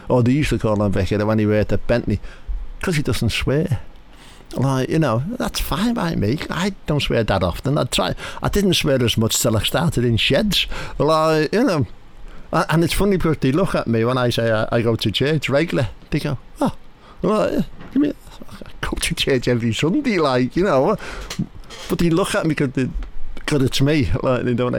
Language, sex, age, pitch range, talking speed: English, male, 60-79, 105-135 Hz, 205 wpm